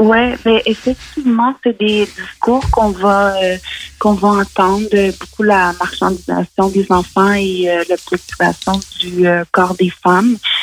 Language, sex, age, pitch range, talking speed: French, female, 30-49, 175-205 Hz, 145 wpm